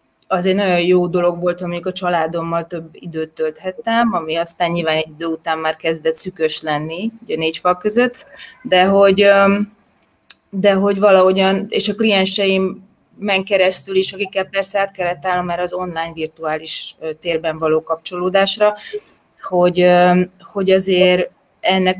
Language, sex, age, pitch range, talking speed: Hungarian, female, 30-49, 165-195 Hz, 140 wpm